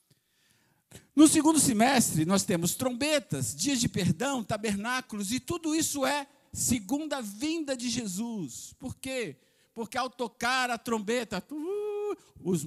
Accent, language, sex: Brazilian, Portuguese, male